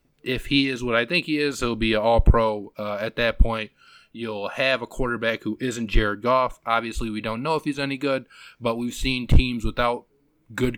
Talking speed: 225 wpm